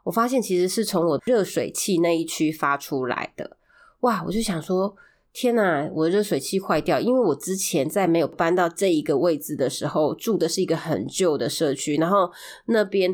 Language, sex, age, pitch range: Chinese, female, 20-39, 150-190 Hz